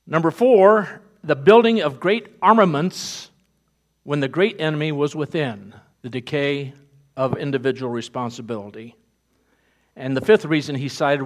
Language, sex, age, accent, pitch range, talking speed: English, male, 50-69, American, 135-175 Hz, 130 wpm